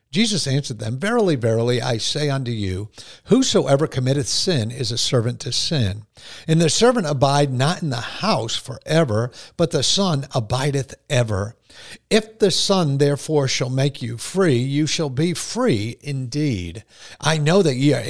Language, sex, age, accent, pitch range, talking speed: English, male, 50-69, American, 115-155 Hz, 160 wpm